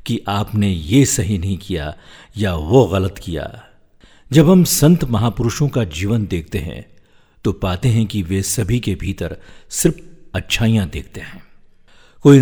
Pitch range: 95-130 Hz